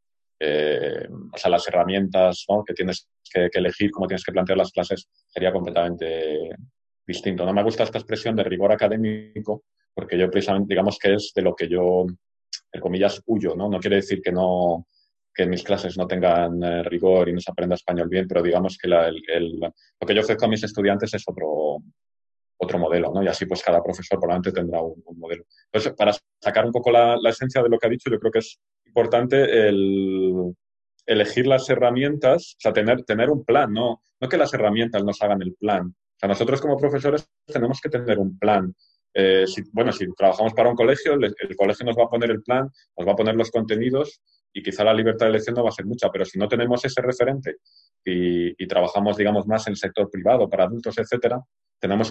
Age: 30-49